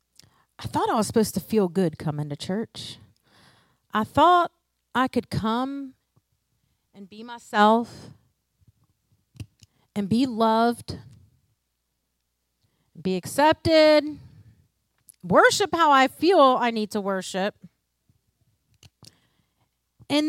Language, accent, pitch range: English, American, 185-275 Hz